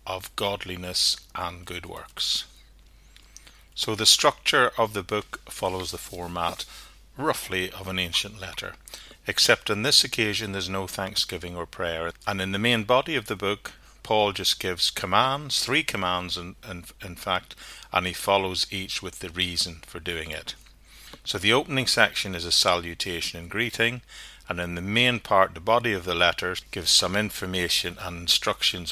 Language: English